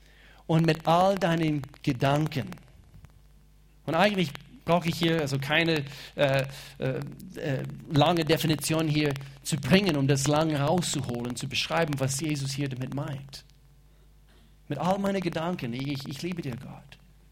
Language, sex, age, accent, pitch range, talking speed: German, male, 40-59, German, 140-160 Hz, 140 wpm